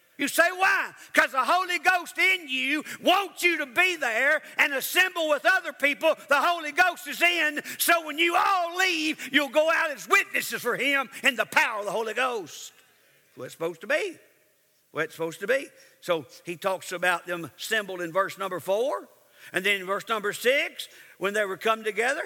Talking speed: 200 wpm